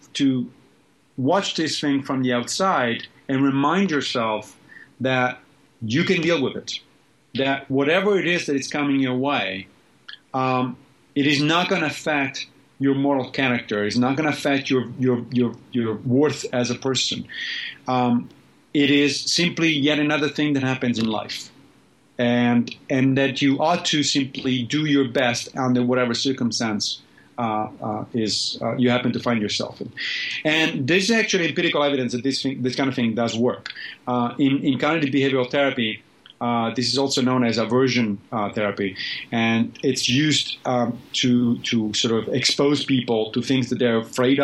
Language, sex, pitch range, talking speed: English, male, 120-140 Hz, 170 wpm